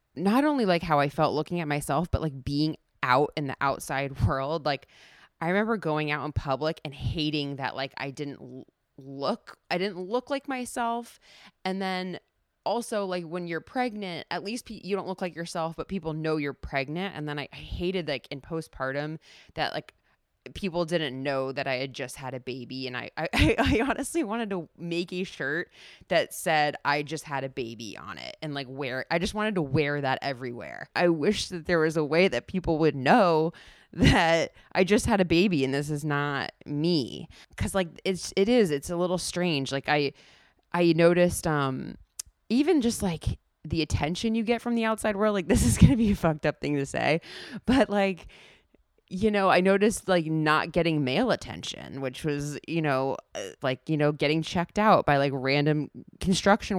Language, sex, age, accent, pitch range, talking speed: English, female, 20-39, American, 145-195 Hz, 200 wpm